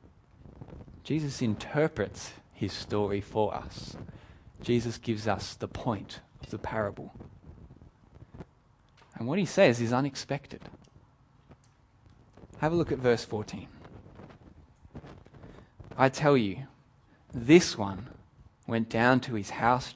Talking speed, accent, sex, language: 110 wpm, Australian, male, English